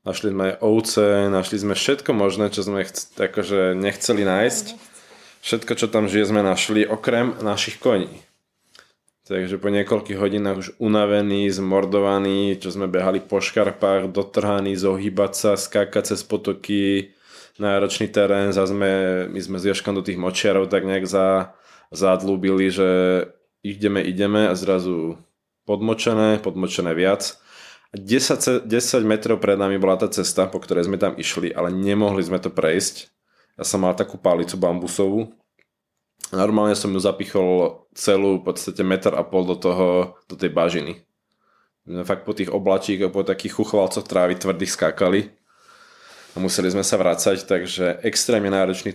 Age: 20-39